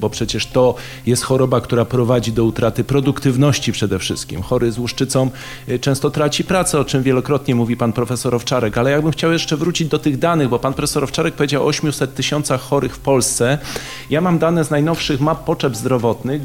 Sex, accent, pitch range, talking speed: male, native, 130-150 Hz, 195 wpm